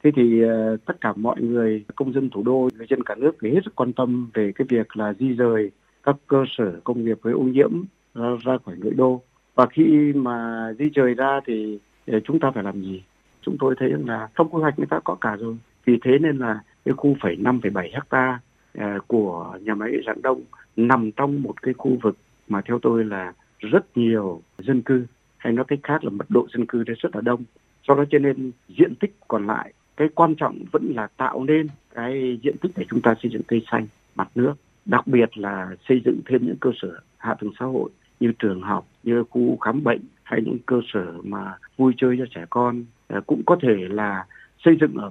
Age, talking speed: 60-79, 225 wpm